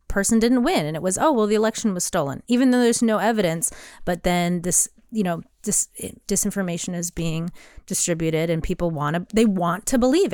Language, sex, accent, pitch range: English, female, American, 185-230 Hz